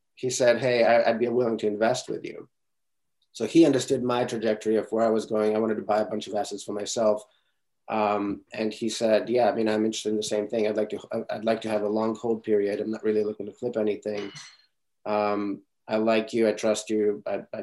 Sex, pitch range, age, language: male, 105-125 Hz, 30-49, English